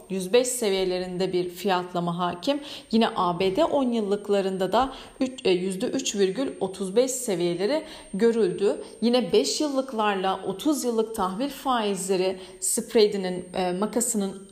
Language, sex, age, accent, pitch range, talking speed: Turkish, female, 40-59, native, 185-245 Hz, 90 wpm